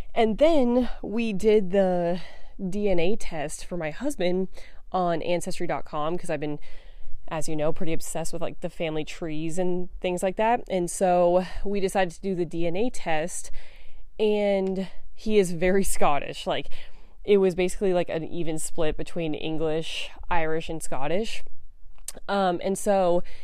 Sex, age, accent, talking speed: female, 20-39, American, 150 wpm